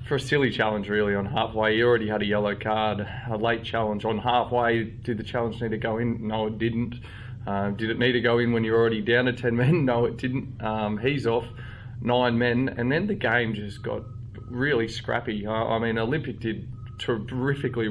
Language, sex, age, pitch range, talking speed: English, male, 20-39, 105-120 Hz, 215 wpm